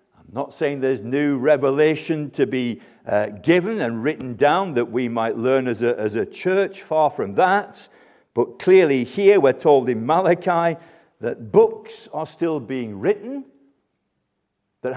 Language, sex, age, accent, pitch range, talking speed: English, male, 50-69, British, 115-165 Hz, 150 wpm